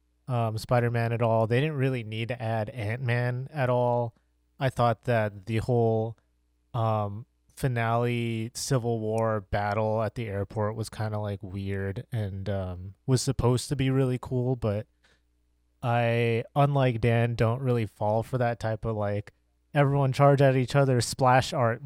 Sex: male